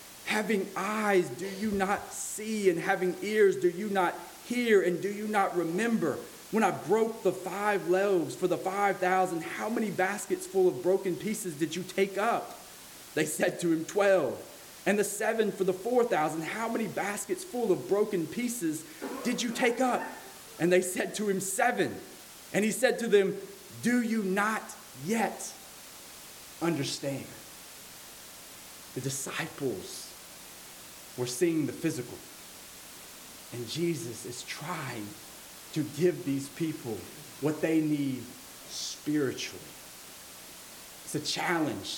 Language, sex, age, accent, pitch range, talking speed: English, male, 30-49, American, 155-200 Hz, 140 wpm